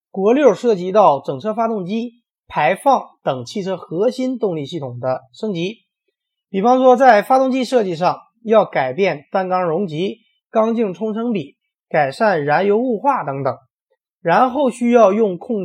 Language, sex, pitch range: Chinese, male, 155-235 Hz